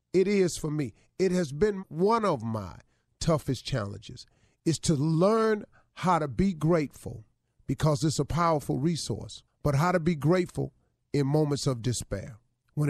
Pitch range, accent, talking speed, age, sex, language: 130-195 Hz, American, 160 wpm, 40-59, male, English